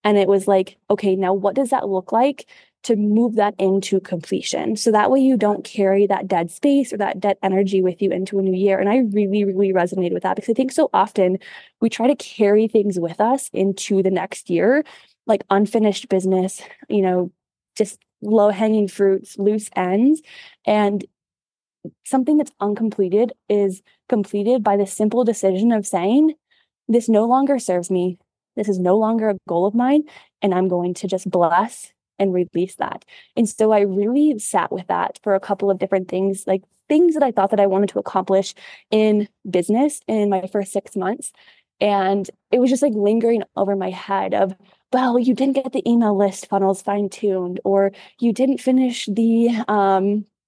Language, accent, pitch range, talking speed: English, American, 195-240 Hz, 190 wpm